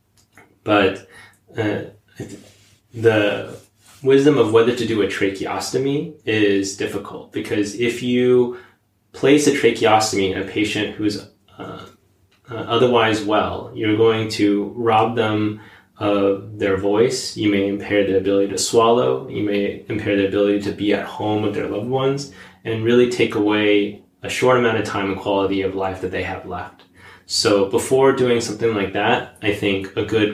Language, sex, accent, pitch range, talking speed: English, male, American, 100-115 Hz, 160 wpm